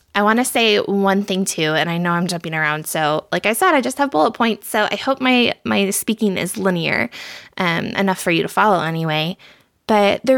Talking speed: 220 wpm